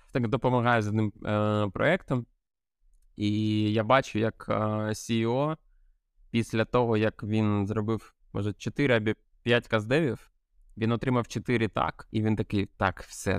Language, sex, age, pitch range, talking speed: Ukrainian, male, 20-39, 95-115 Hz, 140 wpm